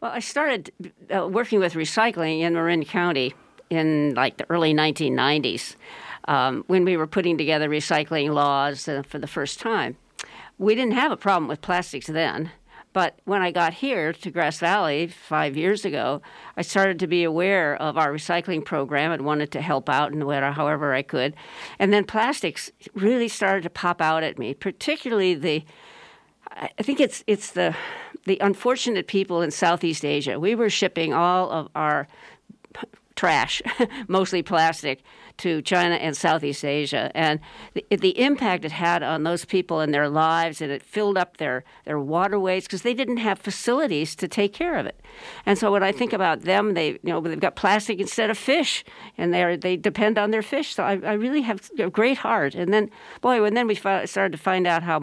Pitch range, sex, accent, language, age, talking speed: 155-210 Hz, female, American, English, 50-69, 190 wpm